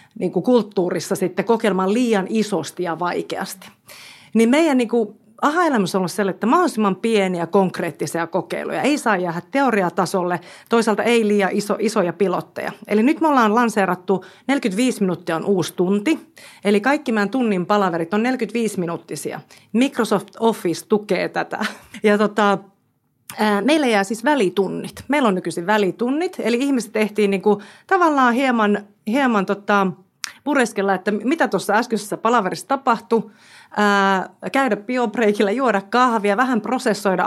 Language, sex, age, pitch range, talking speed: Finnish, female, 40-59, 185-235 Hz, 135 wpm